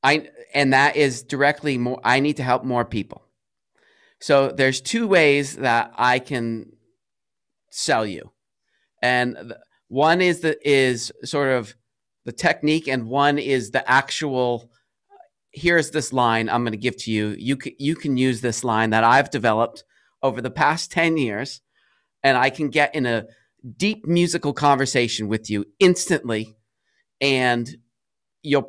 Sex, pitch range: male, 120-145 Hz